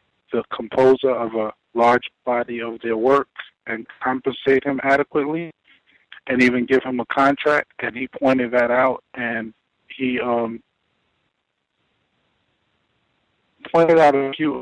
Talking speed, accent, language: 125 wpm, American, English